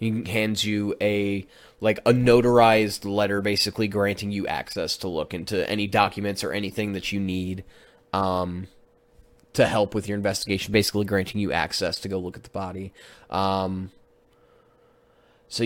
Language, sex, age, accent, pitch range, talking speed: English, male, 20-39, American, 95-115 Hz, 155 wpm